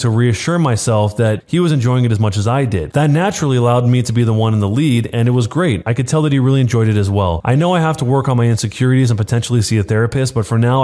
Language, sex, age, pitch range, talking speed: English, male, 20-39, 110-150 Hz, 305 wpm